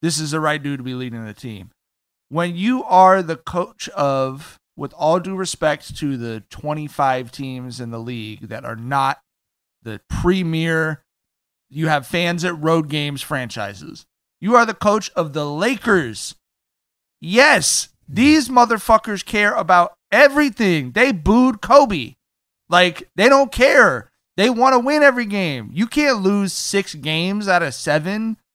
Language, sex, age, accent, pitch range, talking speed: English, male, 30-49, American, 150-210 Hz, 155 wpm